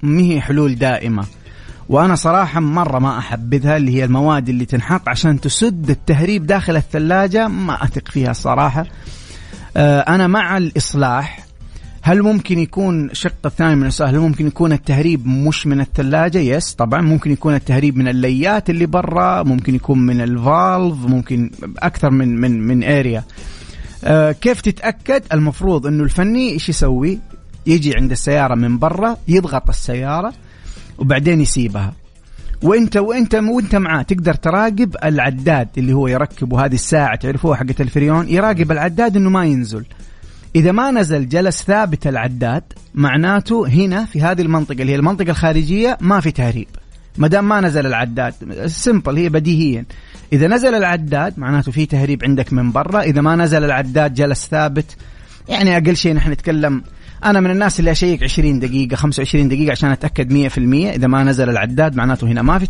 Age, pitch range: 30-49, 130-175 Hz